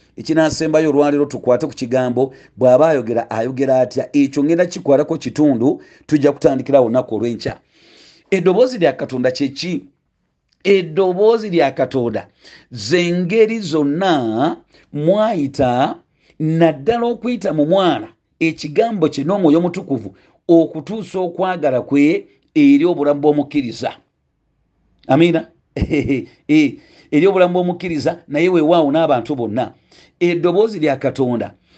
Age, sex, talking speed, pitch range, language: 40-59, male, 110 wpm, 140-180 Hz, English